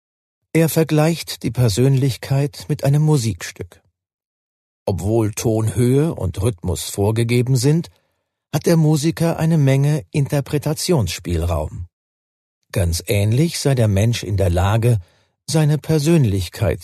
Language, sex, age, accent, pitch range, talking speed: German, male, 40-59, German, 95-145 Hz, 105 wpm